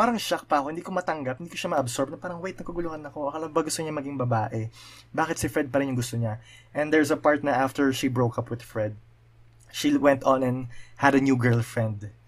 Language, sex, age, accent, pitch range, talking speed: Filipino, male, 20-39, native, 115-145 Hz, 240 wpm